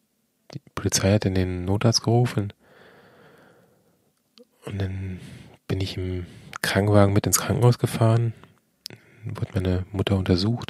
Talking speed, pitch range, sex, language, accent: 120 wpm, 95-130 Hz, male, German, German